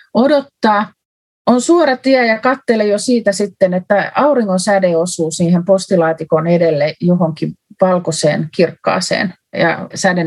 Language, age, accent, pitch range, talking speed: Finnish, 30-49, native, 170-225 Hz, 125 wpm